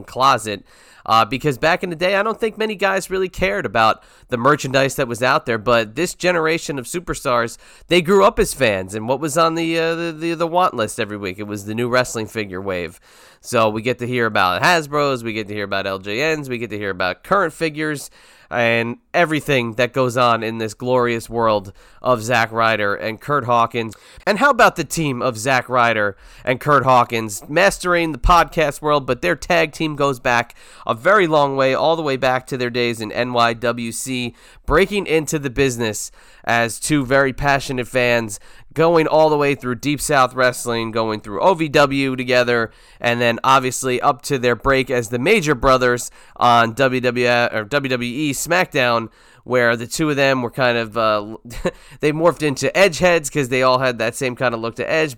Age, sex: 30-49, male